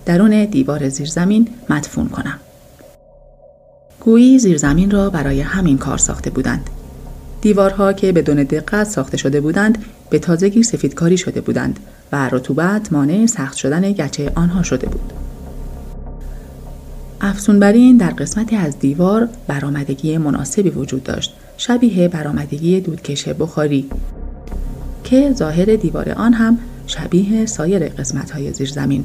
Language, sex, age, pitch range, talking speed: Persian, female, 30-49, 135-210 Hz, 120 wpm